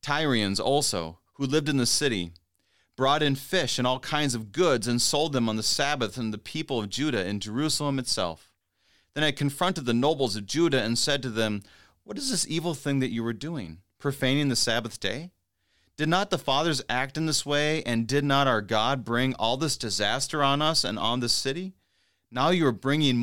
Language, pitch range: English, 105-135 Hz